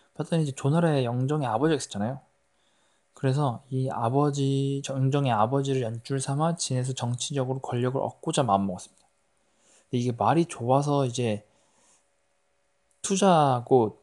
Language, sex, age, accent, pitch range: Korean, male, 20-39, native, 120-145 Hz